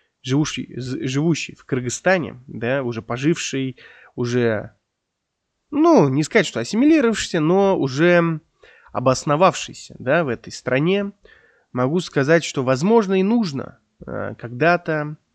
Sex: male